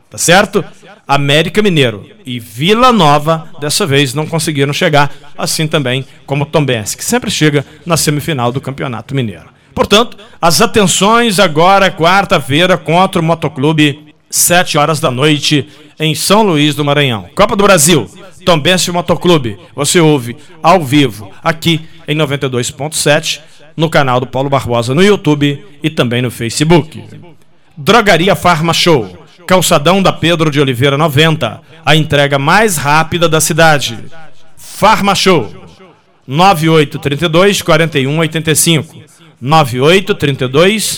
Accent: Brazilian